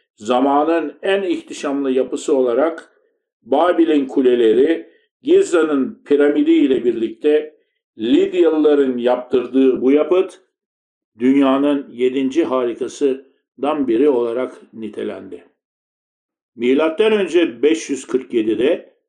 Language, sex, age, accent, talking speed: Turkish, male, 60-79, native, 75 wpm